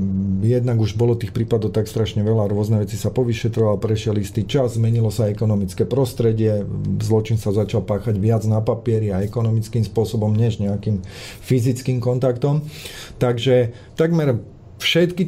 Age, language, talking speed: 40-59, Slovak, 140 wpm